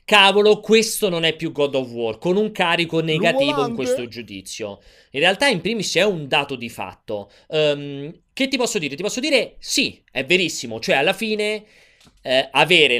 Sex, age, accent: male, 30-49, native